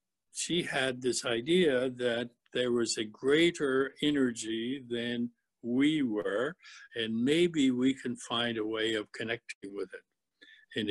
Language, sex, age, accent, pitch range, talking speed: English, male, 60-79, American, 115-145 Hz, 140 wpm